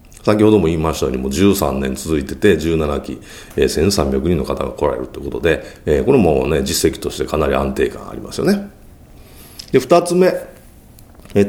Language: Japanese